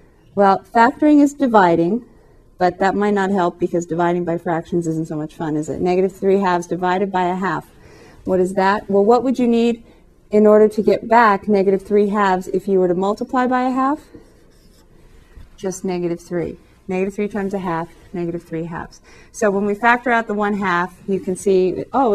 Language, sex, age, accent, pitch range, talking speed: English, female, 30-49, American, 175-220 Hz, 200 wpm